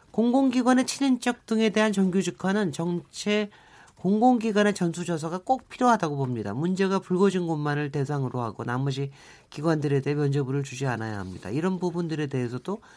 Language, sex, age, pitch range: Korean, male, 40-59, 130-185 Hz